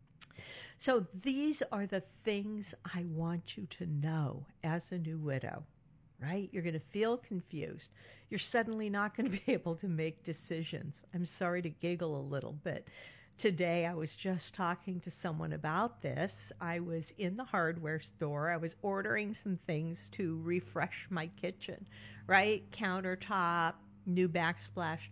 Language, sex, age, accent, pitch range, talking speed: English, female, 50-69, American, 160-205 Hz, 155 wpm